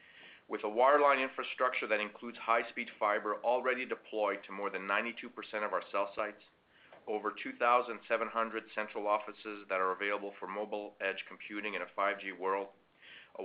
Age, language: 40-59, English